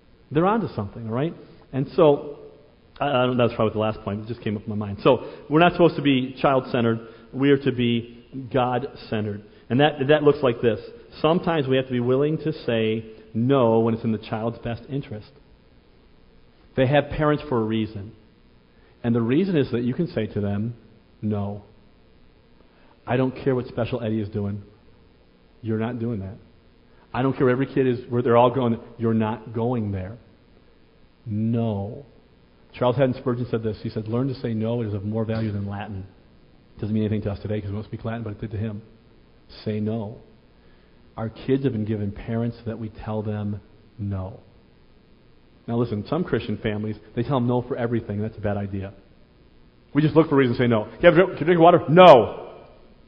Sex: male